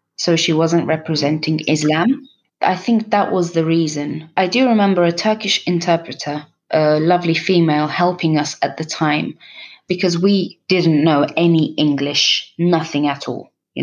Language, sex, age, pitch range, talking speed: English, female, 20-39, 150-185 Hz, 150 wpm